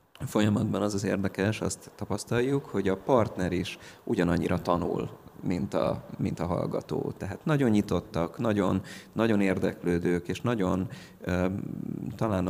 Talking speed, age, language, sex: 120 wpm, 30-49, Hungarian, male